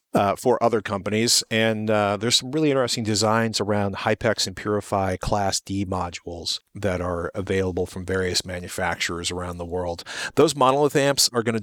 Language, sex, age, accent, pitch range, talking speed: English, male, 40-59, American, 95-115 Hz, 170 wpm